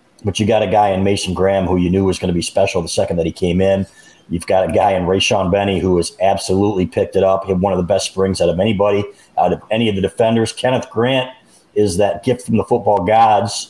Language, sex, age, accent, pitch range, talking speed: English, male, 40-59, American, 90-110 Hz, 265 wpm